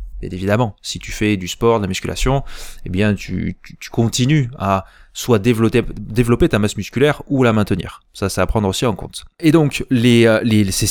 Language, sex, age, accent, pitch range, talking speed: French, male, 20-39, French, 100-125 Hz, 210 wpm